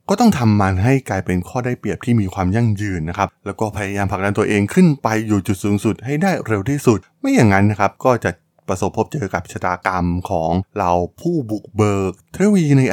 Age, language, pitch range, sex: 20-39, Thai, 95-125 Hz, male